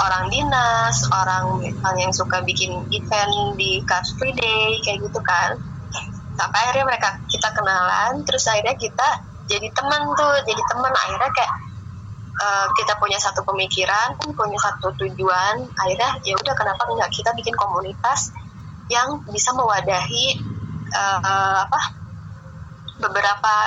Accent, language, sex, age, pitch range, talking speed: native, Indonesian, female, 20-39, 140-210 Hz, 130 wpm